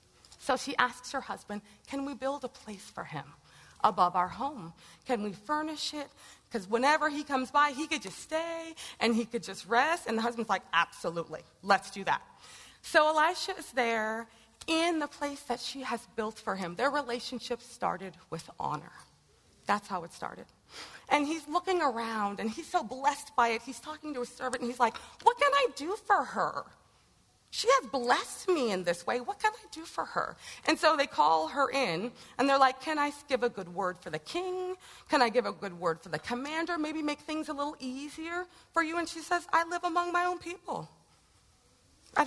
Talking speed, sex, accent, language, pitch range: 205 wpm, female, American, English, 220-310 Hz